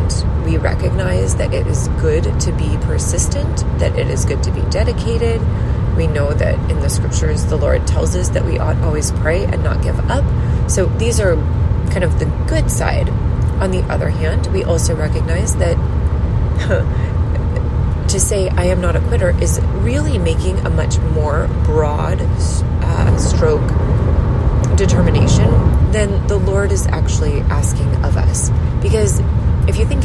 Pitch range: 80-100 Hz